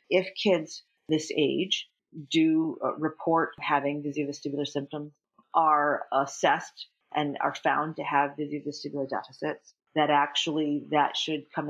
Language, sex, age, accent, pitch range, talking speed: English, female, 40-59, American, 140-155 Hz, 120 wpm